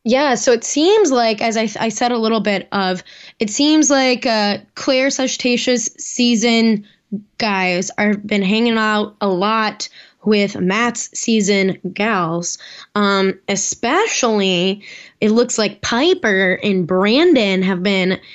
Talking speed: 135 wpm